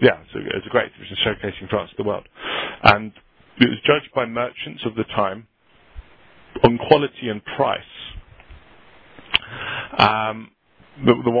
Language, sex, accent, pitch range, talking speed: English, male, British, 105-135 Hz, 135 wpm